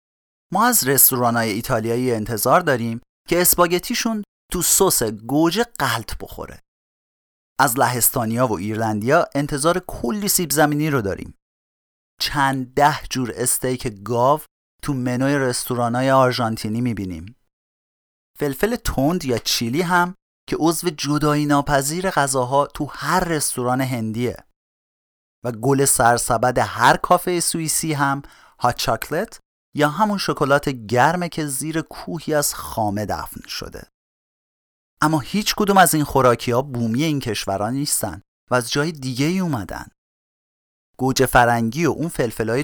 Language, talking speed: Persian, 125 wpm